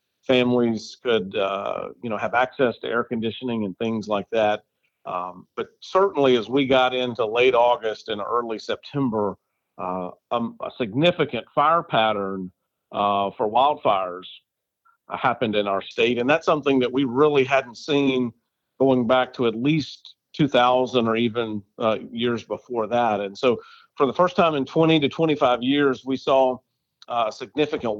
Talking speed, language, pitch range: 160 wpm, English, 115-150 Hz